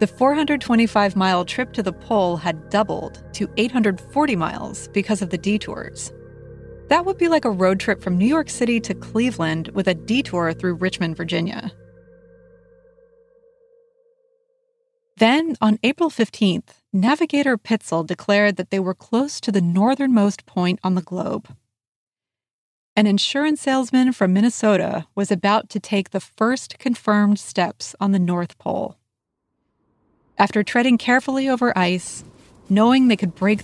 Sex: female